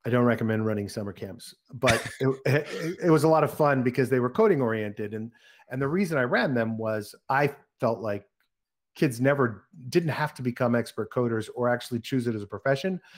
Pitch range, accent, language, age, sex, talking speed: 110-135 Hz, American, English, 40-59, male, 210 wpm